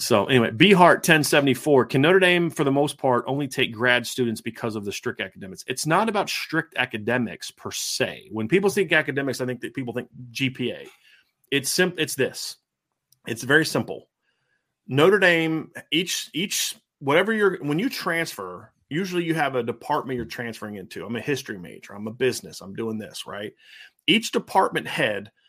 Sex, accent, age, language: male, American, 30-49, English